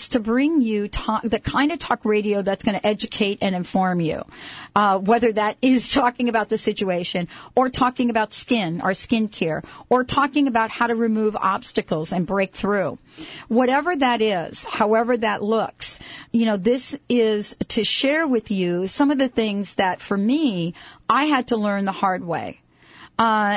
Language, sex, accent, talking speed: English, female, American, 180 wpm